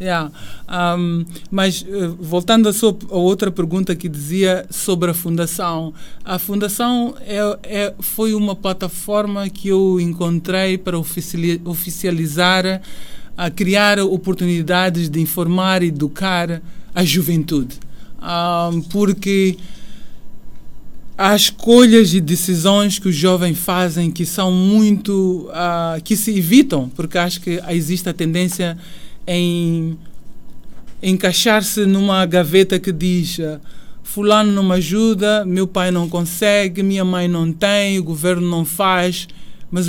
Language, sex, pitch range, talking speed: Portuguese, male, 170-195 Hz, 110 wpm